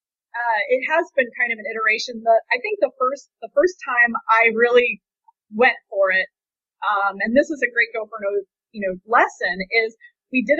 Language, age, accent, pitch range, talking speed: English, 30-49, American, 205-260 Hz, 205 wpm